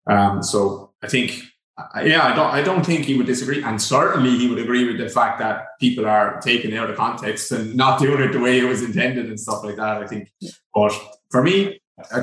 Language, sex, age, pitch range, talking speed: English, male, 20-39, 105-125 Hz, 230 wpm